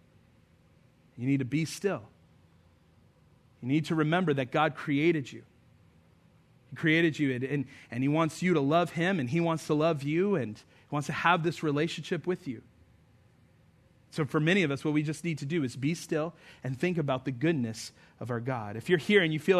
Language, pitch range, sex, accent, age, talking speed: English, 135-195 Hz, male, American, 30-49, 205 wpm